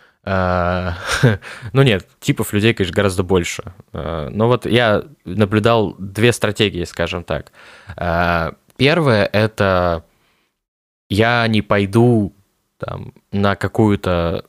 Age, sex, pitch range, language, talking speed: 20-39, male, 95-115 Hz, Russian, 90 wpm